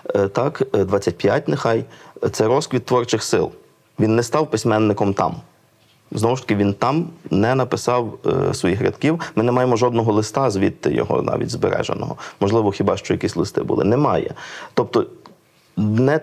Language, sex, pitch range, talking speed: Ukrainian, male, 105-130 Hz, 145 wpm